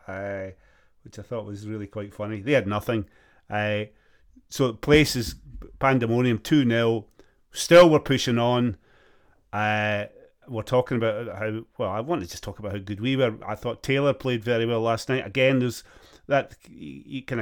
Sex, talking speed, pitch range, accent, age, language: male, 165 wpm, 105-130 Hz, British, 30-49, English